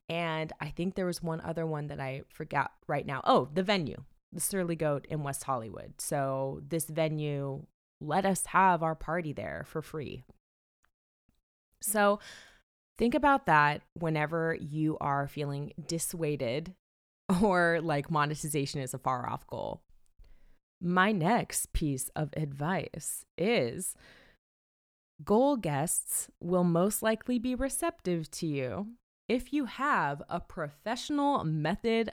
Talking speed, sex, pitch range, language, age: 135 wpm, female, 145-185 Hz, English, 20-39